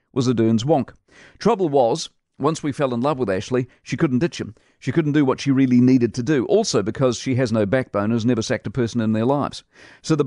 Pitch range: 120-145 Hz